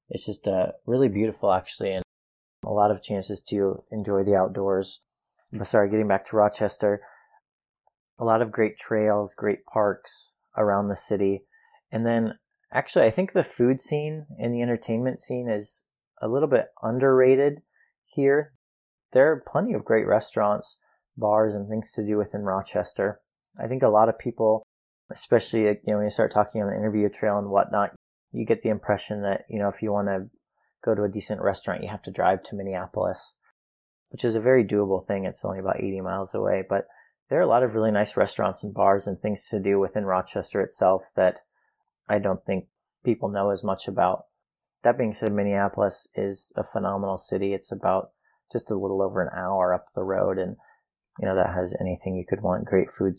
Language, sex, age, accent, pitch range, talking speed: English, male, 30-49, American, 95-110 Hz, 195 wpm